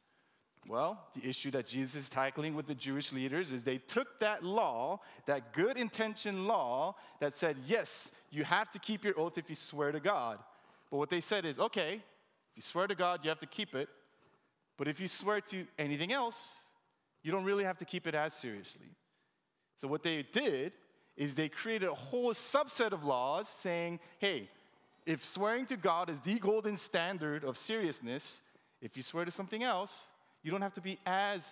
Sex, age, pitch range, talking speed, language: male, 30-49, 140-195 Hz, 195 wpm, English